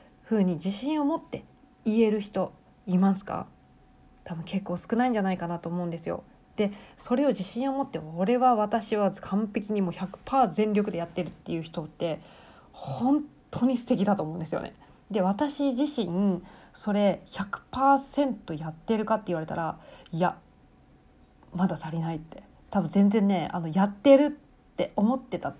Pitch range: 170-220 Hz